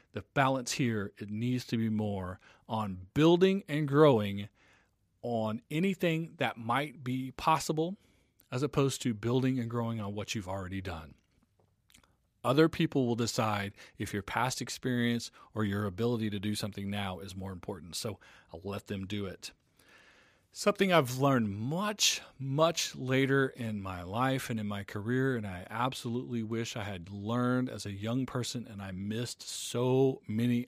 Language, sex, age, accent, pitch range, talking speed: English, male, 40-59, American, 105-135 Hz, 160 wpm